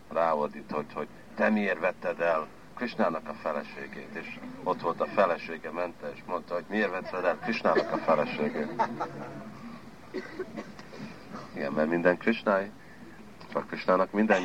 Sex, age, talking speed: male, 50-69, 135 wpm